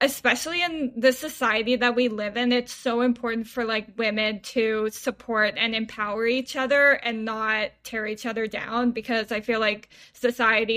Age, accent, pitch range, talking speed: 10-29, American, 220-245 Hz, 175 wpm